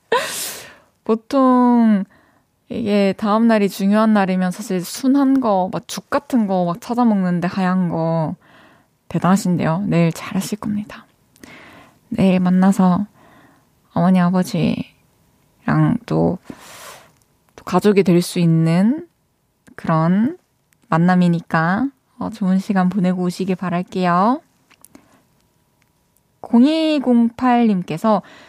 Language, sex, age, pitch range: Korean, female, 20-39, 185-240 Hz